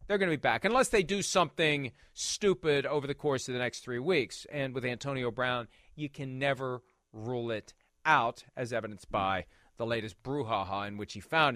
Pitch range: 120-170 Hz